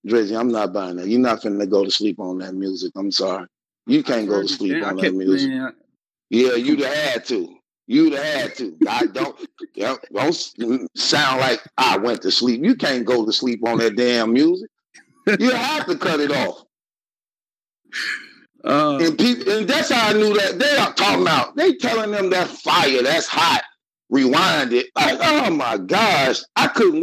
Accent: American